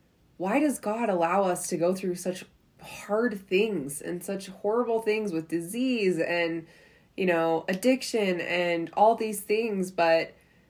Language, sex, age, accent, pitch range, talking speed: English, female, 20-39, American, 165-195 Hz, 145 wpm